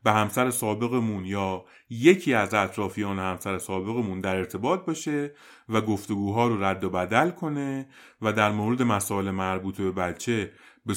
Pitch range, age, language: 95-125 Hz, 30-49, Persian